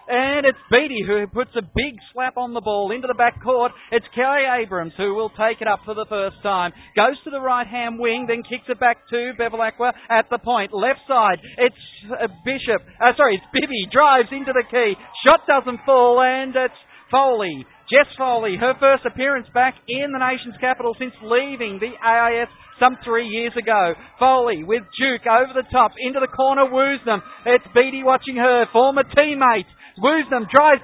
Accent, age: Australian, 40-59